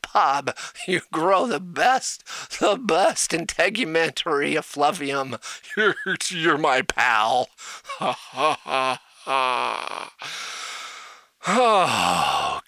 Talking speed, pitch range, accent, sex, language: 80 wpm, 130-160 Hz, American, male, English